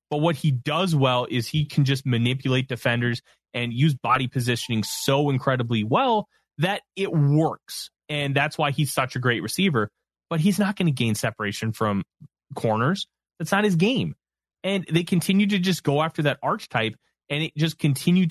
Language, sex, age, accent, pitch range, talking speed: English, male, 20-39, American, 120-155 Hz, 180 wpm